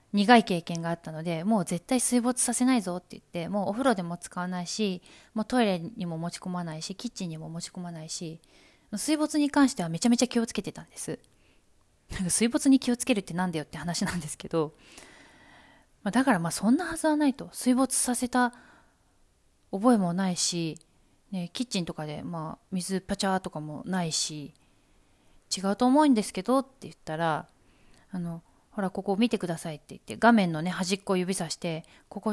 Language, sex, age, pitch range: Japanese, female, 20-39, 165-230 Hz